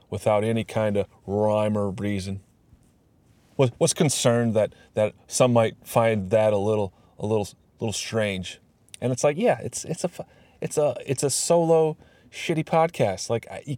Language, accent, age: English, American, 30-49